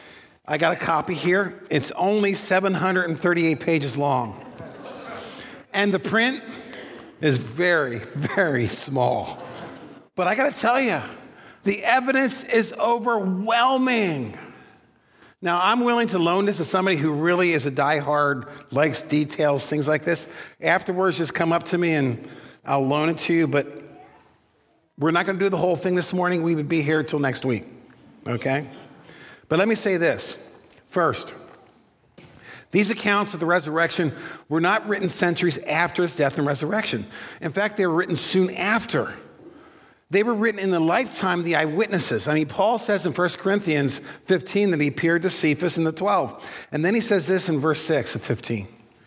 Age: 50-69